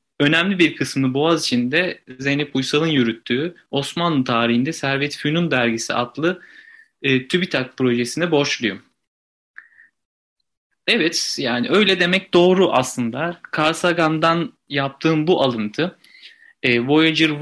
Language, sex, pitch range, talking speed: Turkish, male, 130-170 Hz, 100 wpm